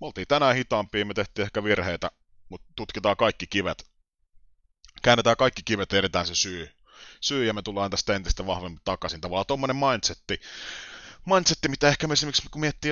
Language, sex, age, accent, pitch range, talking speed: Finnish, male, 30-49, native, 85-115 Hz, 155 wpm